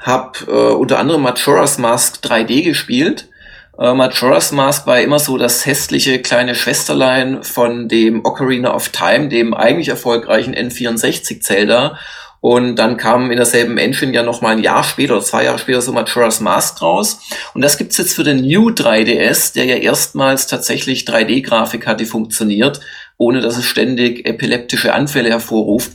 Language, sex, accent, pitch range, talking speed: German, male, German, 120-140 Hz, 155 wpm